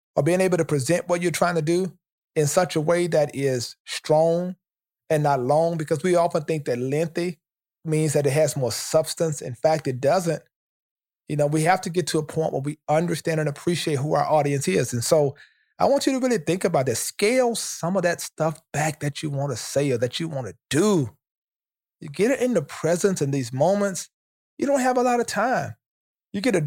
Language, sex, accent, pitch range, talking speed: English, male, American, 150-185 Hz, 225 wpm